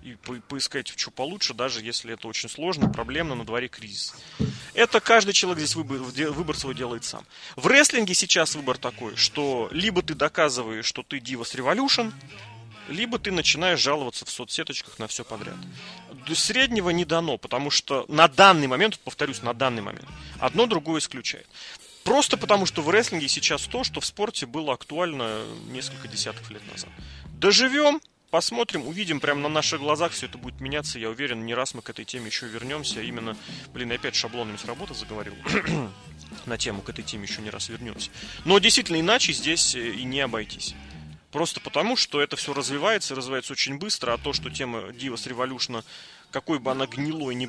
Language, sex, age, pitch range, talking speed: Russian, male, 30-49, 115-160 Hz, 185 wpm